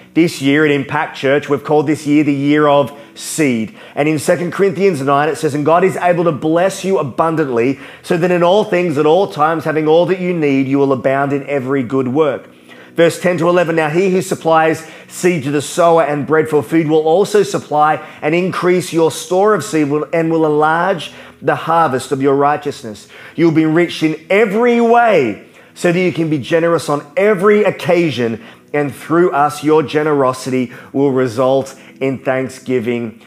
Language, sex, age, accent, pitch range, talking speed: English, male, 30-49, Australian, 140-170 Hz, 190 wpm